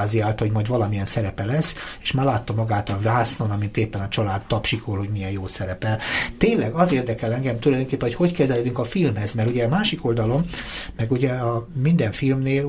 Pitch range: 105-135 Hz